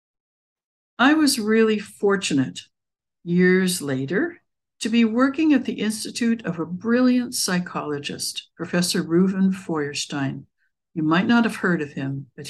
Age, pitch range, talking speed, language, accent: 60-79, 160-215 Hz, 130 wpm, English, American